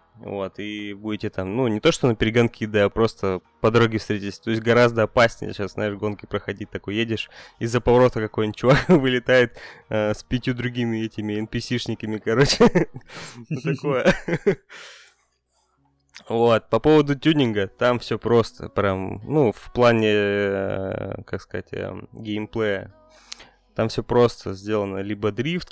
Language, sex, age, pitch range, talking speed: Russian, male, 20-39, 100-120 Hz, 140 wpm